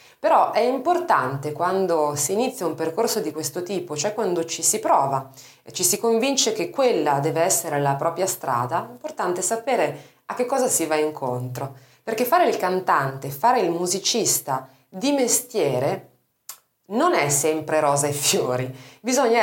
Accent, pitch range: native, 140-215 Hz